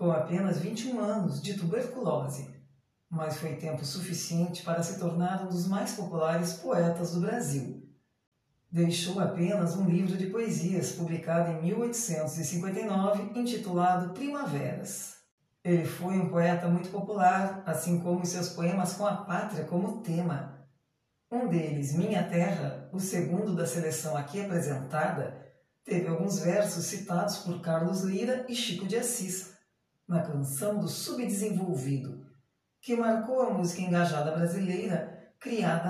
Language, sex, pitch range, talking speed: Portuguese, female, 160-195 Hz, 130 wpm